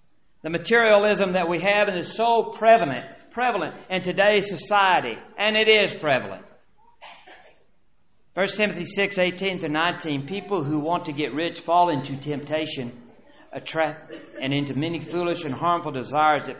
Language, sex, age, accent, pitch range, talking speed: English, male, 50-69, American, 155-210 Hz, 140 wpm